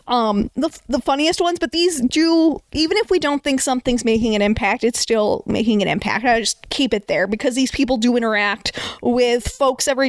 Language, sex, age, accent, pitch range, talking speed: English, female, 20-39, American, 225-280 Hz, 210 wpm